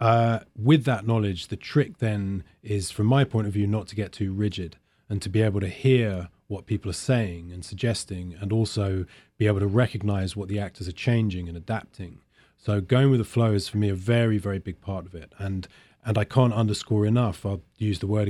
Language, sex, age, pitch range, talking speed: English, male, 30-49, 95-115 Hz, 225 wpm